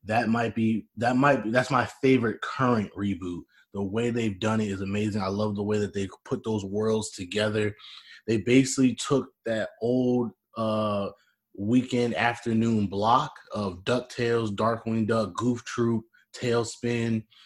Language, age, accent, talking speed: English, 20-39, American, 150 wpm